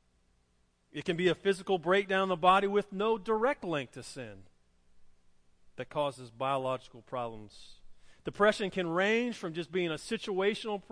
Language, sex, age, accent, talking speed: English, male, 40-59, American, 150 wpm